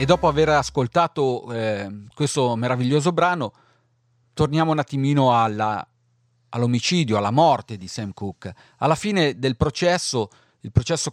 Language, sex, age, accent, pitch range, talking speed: Italian, male, 40-59, native, 115-160 Hz, 130 wpm